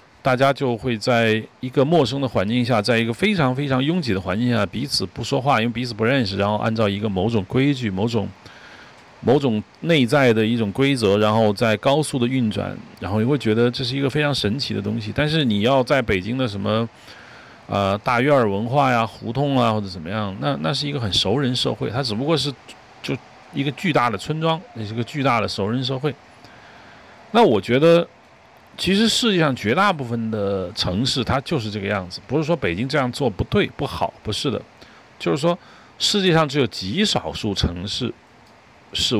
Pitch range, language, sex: 105-135 Hz, Chinese, male